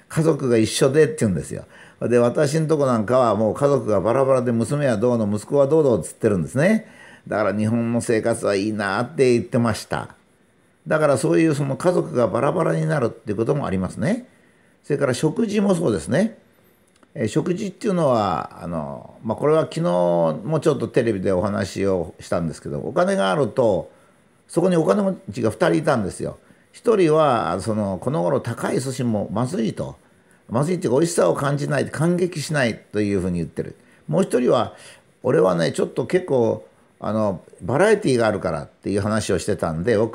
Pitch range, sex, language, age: 110-160 Hz, male, Japanese, 50-69